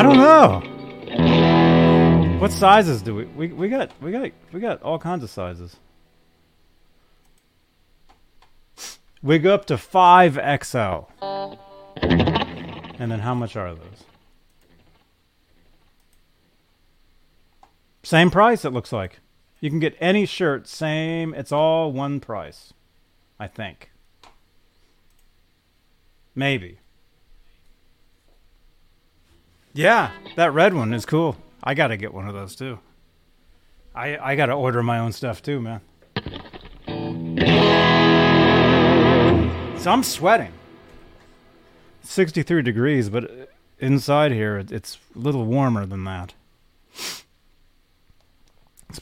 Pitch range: 85-130 Hz